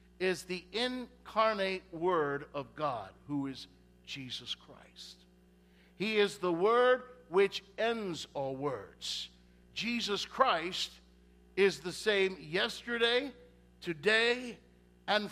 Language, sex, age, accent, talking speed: English, male, 60-79, American, 100 wpm